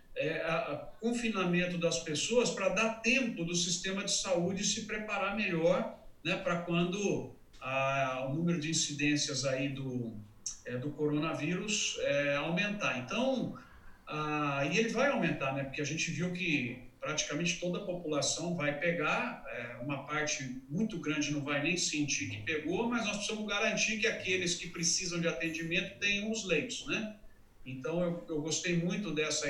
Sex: male